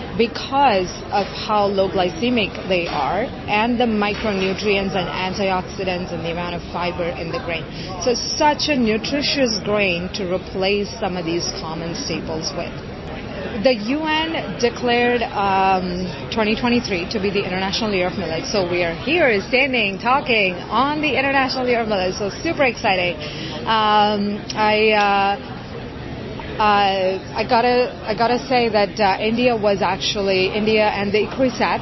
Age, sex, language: 30-49, female, English